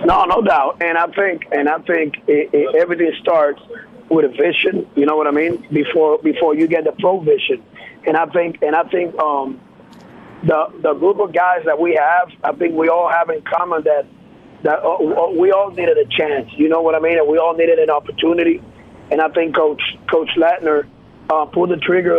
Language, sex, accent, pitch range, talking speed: English, male, American, 160-200 Hz, 215 wpm